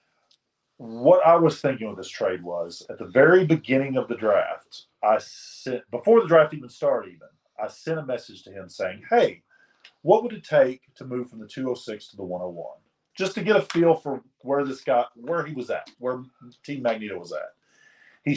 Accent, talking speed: American, 215 wpm